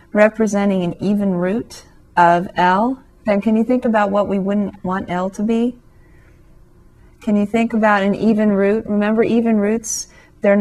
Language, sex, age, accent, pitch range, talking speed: English, female, 40-59, American, 185-215 Hz, 165 wpm